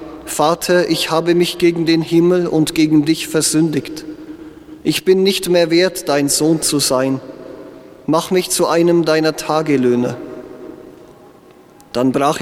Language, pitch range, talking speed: English, 155-180 Hz, 135 wpm